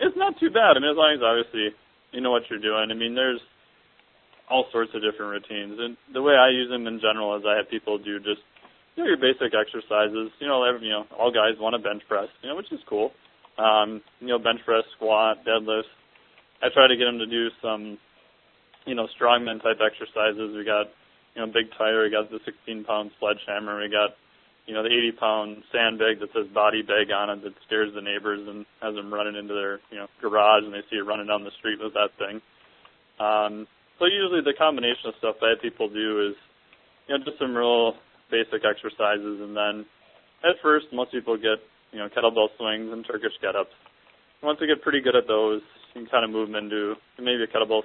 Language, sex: English, male